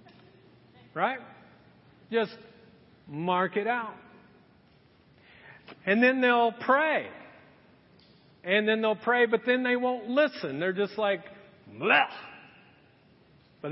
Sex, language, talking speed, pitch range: male, English, 100 wpm, 175-235 Hz